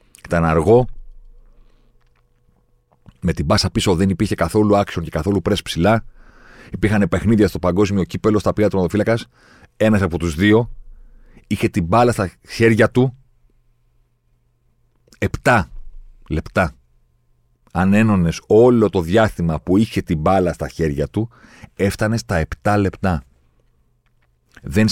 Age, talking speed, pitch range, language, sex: 40-59, 125 wpm, 70-105 Hz, Greek, male